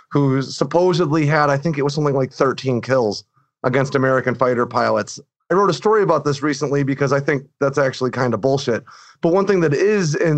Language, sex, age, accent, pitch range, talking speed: English, male, 30-49, American, 130-160 Hz, 210 wpm